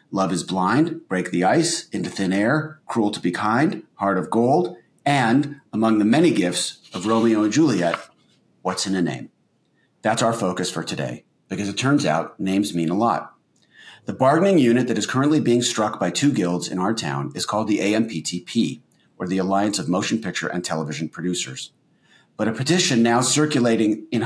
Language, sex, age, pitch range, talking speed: English, male, 40-59, 100-125 Hz, 185 wpm